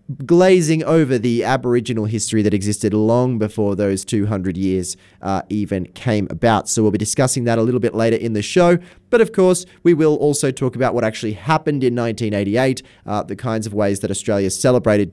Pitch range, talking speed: 105-135 Hz, 195 wpm